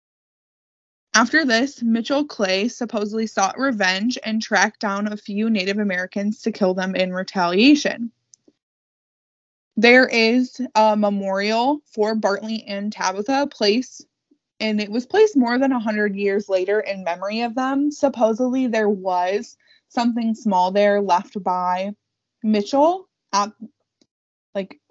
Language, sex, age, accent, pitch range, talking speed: English, female, 20-39, American, 200-255 Hz, 125 wpm